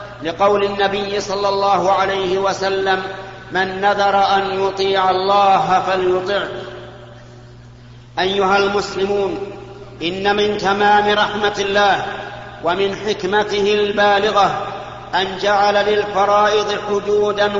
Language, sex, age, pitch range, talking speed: Arabic, male, 50-69, 195-205 Hz, 90 wpm